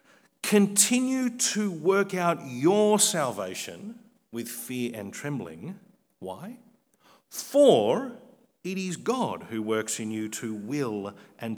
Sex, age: male, 40-59